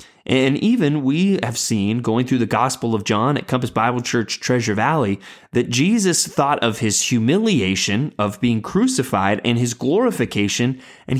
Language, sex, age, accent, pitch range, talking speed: English, male, 20-39, American, 110-150 Hz, 160 wpm